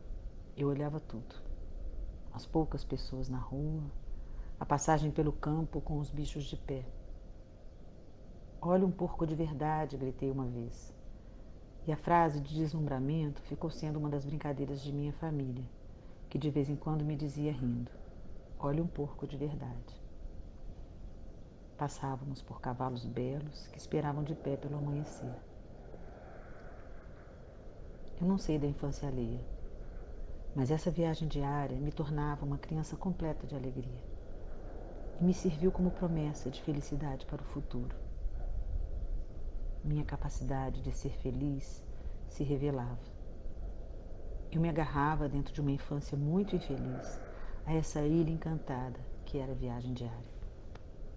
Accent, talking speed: Brazilian, 135 wpm